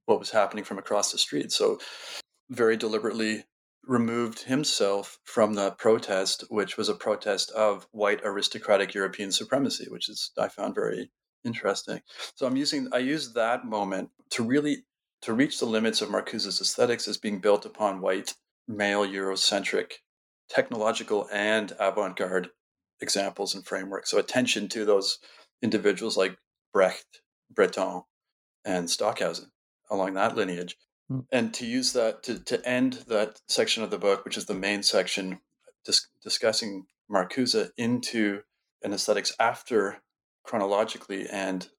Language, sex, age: English, male, 40-59